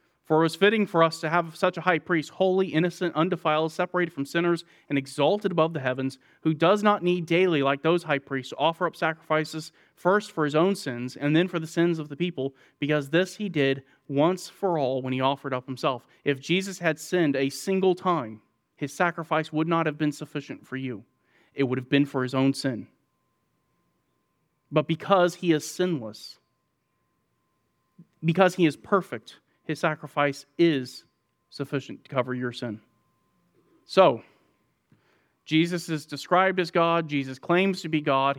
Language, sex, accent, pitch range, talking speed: English, male, American, 140-180 Hz, 175 wpm